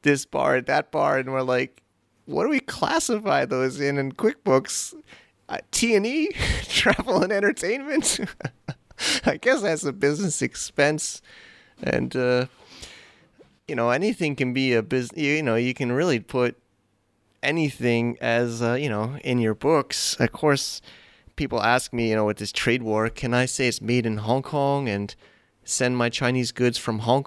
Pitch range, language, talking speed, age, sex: 115-140 Hz, English, 165 wpm, 30-49, male